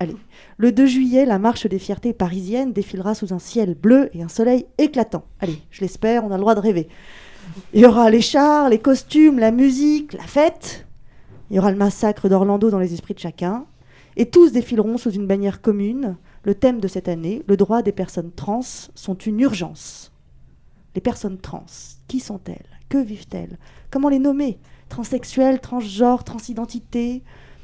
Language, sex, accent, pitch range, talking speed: French, female, French, 190-250 Hz, 180 wpm